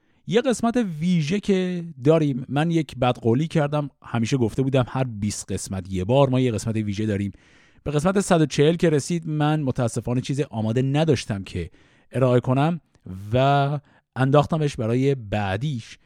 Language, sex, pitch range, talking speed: Persian, male, 105-155 Hz, 150 wpm